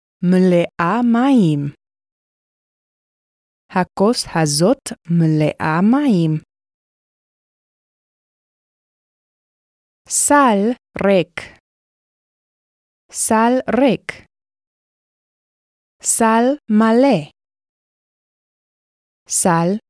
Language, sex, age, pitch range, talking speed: Hebrew, female, 20-39, 155-240 Hz, 40 wpm